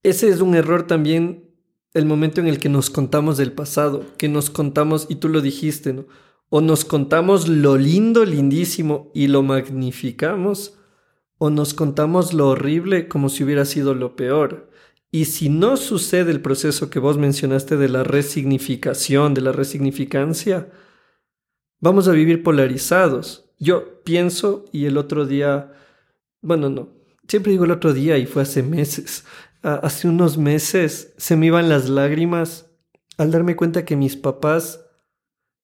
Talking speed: 155 wpm